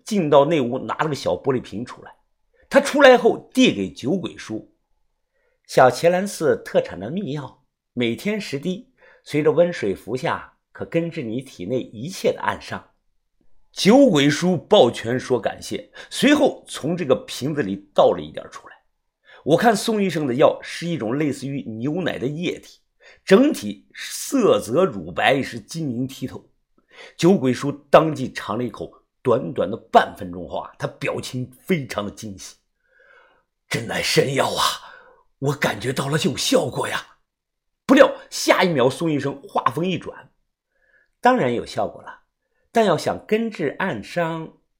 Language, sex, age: Chinese, male, 50-69